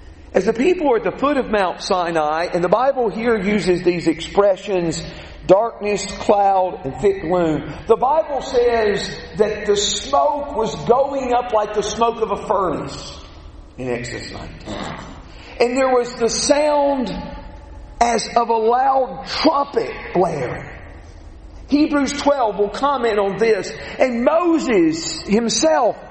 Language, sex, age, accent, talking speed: English, male, 50-69, American, 140 wpm